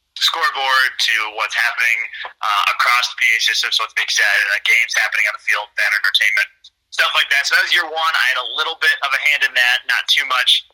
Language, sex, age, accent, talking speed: English, male, 30-49, American, 220 wpm